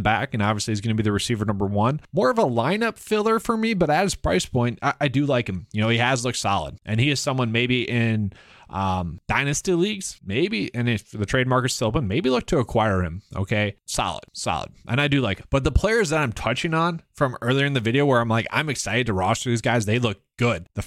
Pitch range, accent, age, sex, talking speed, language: 105-140 Hz, American, 20-39, male, 255 wpm, English